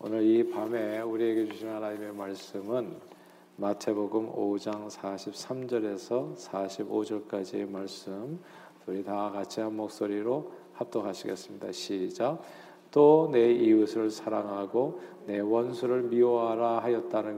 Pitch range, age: 105-120 Hz, 40-59